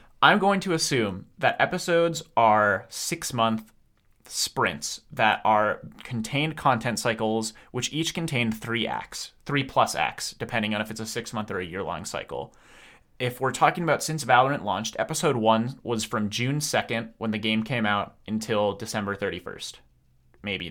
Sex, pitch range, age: male, 110-130 Hz, 30-49